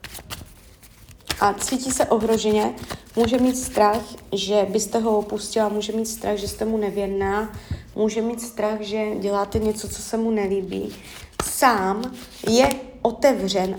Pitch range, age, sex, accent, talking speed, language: 200-235 Hz, 30-49, female, native, 135 wpm, Czech